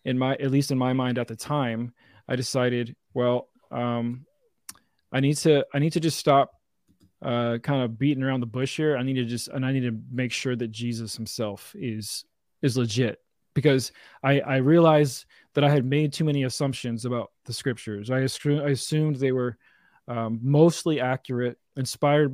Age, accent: 20-39, American